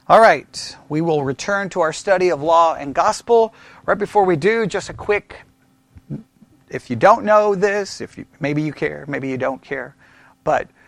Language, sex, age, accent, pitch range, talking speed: English, male, 40-59, American, 145-185 Hz, 190 wpm